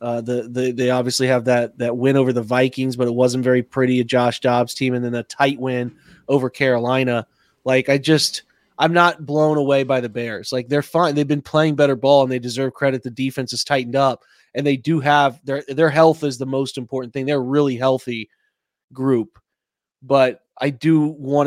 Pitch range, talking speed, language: 130-145 Hz, 210 wpm, English